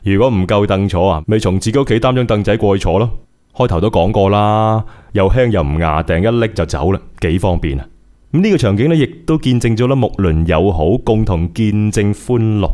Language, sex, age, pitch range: Chinese, male, 20-39, 85-115 Hz